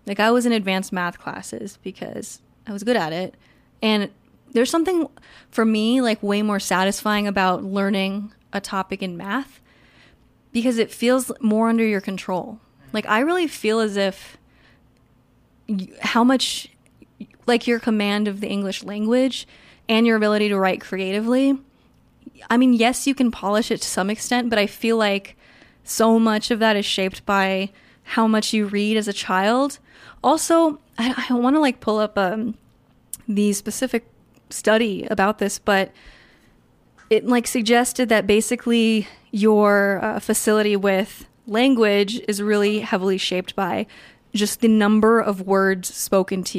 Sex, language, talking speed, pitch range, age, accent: female, English, 155 wpm, 195-230 Hz, 20-39, American